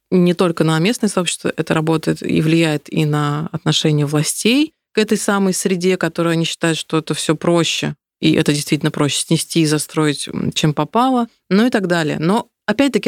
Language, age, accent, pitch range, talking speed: Russian, 20-39, native, 155-190 Hz, 180 wpm